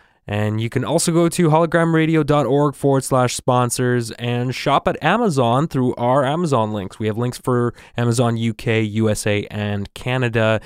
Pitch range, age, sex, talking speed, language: 115-135 Hz, 20-39, male, 150 wpm, English